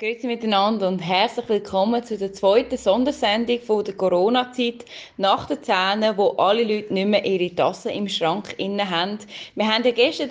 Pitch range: 185-240 Hz